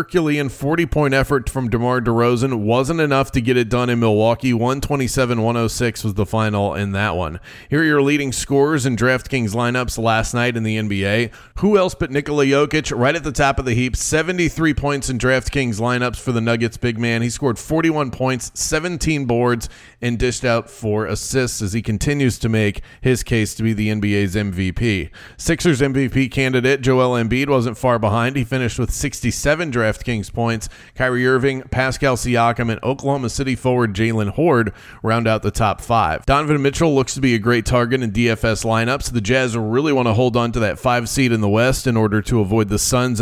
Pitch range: 115-135 Hz